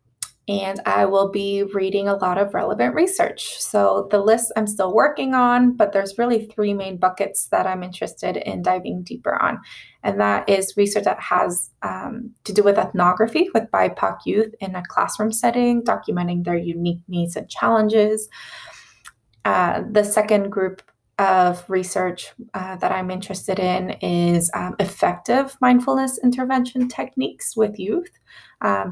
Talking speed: 155 wpm